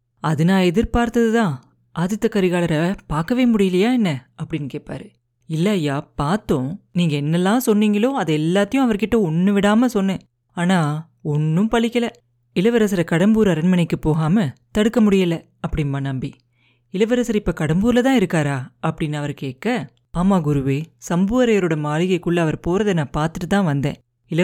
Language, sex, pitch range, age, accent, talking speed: Tamil, female, 155-220 Hz, 30-49, native, 120 wpm